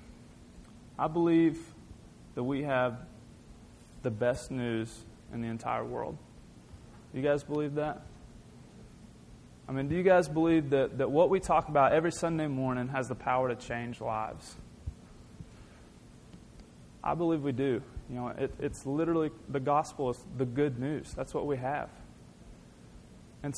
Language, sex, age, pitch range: English, male, 30-49, 120-150 Hz